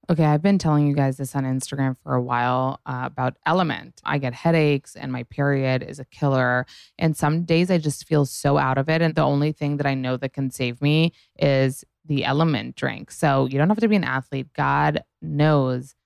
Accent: American